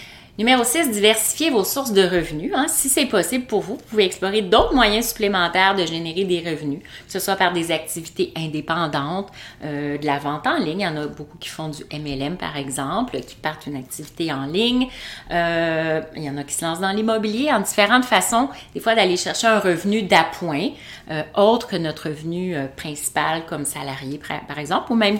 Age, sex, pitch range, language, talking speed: 30-49, female, 150-210 Hz, French, 205 wpm